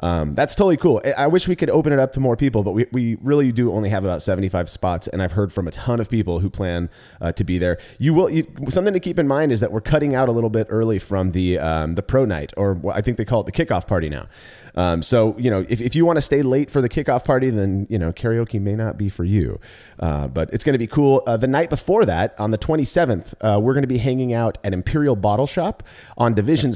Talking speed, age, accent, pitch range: 280 wpm, 30-49, American, 100-135 Hz